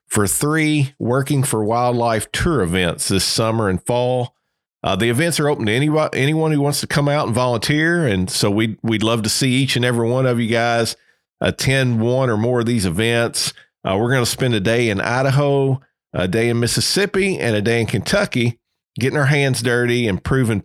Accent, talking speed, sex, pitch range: American, 205 wpm, male, 110-135 Hz